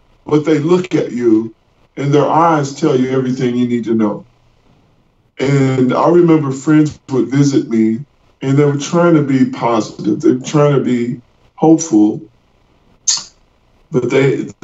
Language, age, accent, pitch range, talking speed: English, 50-69, American, 115-145 Hz, 150 wpm